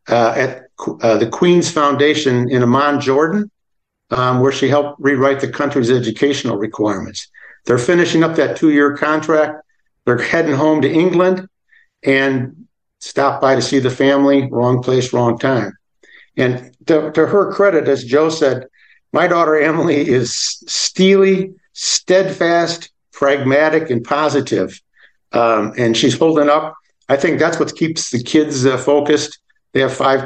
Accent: American